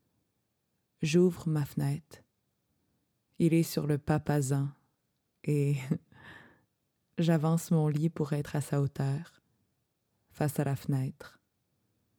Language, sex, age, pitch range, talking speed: French, female, 20-39, 140-165 Hz, 105 wpm